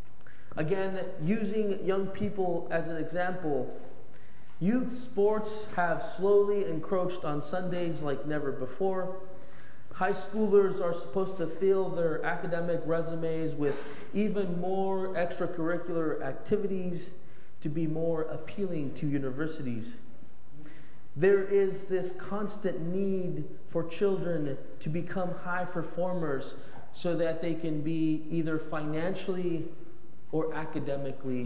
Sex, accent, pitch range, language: male, American, 155-190 Hz, English